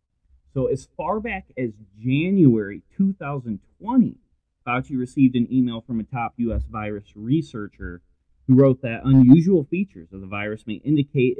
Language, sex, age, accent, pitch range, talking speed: English, male, 30-49, American, 95-120 Hz, 140 wpm